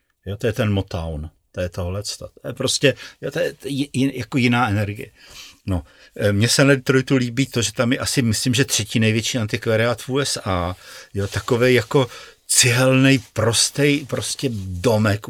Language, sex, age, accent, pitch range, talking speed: Czech, male, 50-69, native, 95-120 Hz, 170 wpm